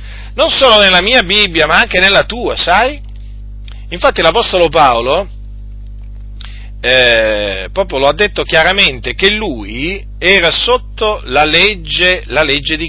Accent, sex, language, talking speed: native, male, Italian, 130 wpm